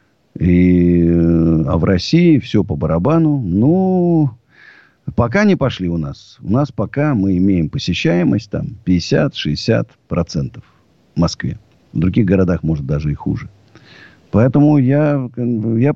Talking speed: 125 wpm